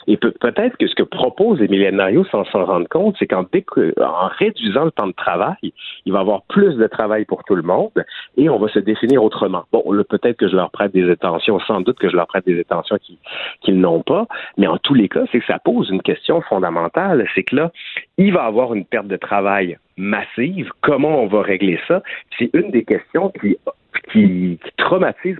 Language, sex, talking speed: French, male, 220 wpm